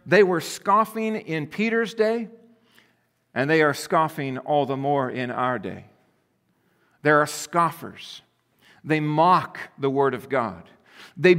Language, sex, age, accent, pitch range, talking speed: English, male, 50-69, American, 150-195 Hz, 135 wpm